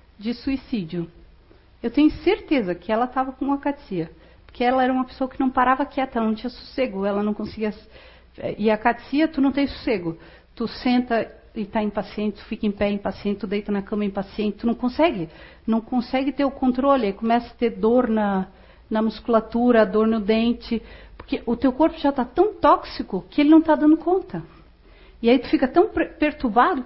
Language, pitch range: Portuguese, 215-275 Hz